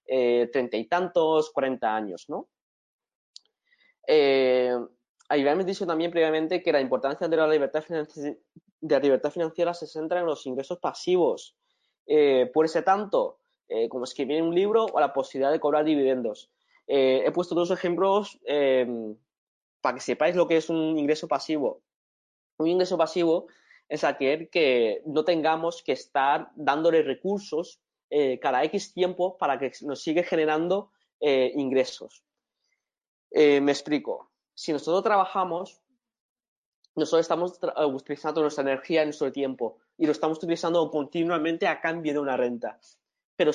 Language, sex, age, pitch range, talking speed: Spanish, male, 20-39, 140-185 Hz, 150 wpm